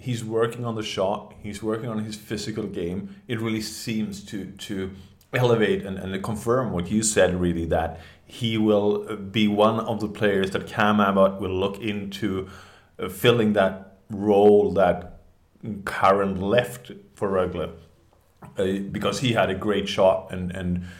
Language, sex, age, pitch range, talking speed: English, male, 30-49, 90-105 Hz, 160 wpm